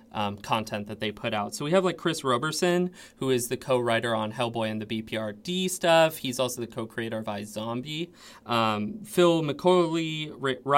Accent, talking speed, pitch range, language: American, 190 wpm, 110-145 Hz, English